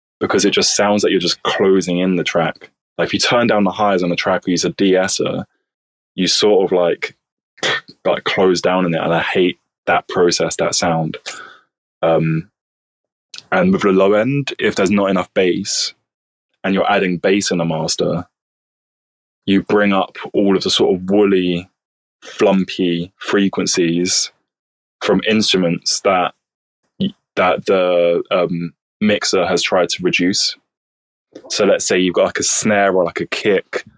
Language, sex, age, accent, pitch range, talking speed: English, male, 20-39, British, 85-95 Hz, 165 wpm